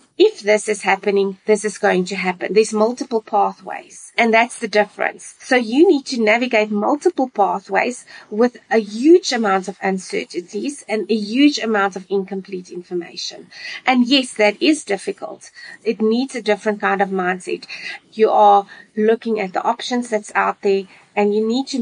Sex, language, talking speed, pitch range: female, English, 170 wpm, 205-250 Hz